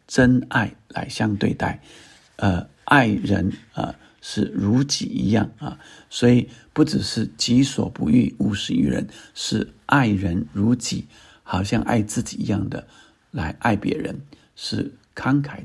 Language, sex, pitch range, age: Chinese, male, 100-115 Hz, 60-79